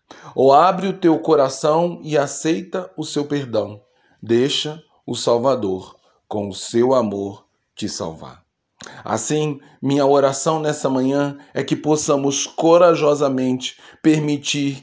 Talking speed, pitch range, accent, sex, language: 115 wpm, 125-155 Hz, Brazilian, male, Portuguese